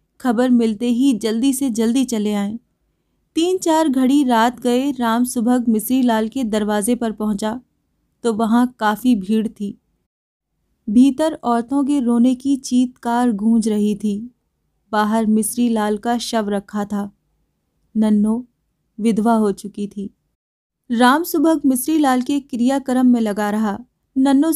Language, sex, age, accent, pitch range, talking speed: Hindi, female, 20-39, native, 230-280 Hz, 130 wpm